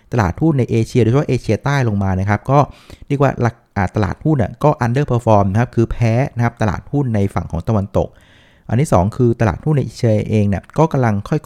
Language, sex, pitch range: Thai, male, 100-130 Hz